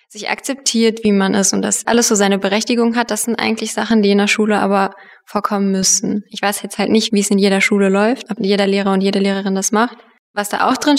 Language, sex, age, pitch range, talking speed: German, female, 20-39, 190-215 Hz, 250 wpm